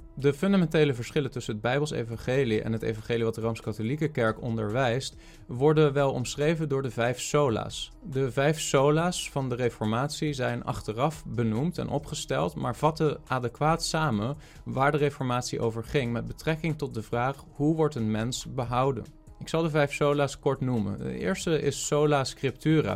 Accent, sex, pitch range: Dutch, male, 115-150 Hz